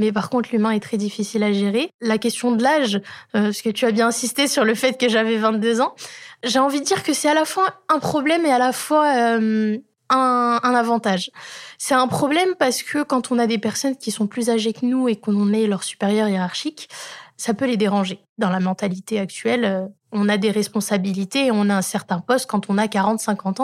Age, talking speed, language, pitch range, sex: 20-39, 230 wpm, French, 210-250 Hz, female